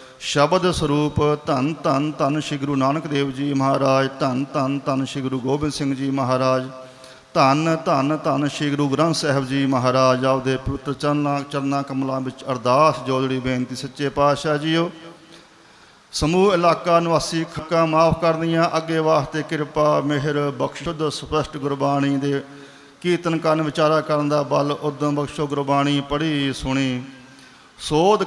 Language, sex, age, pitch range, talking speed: Punjabi, male, 40-59, 135-155 Hz, 135 wpm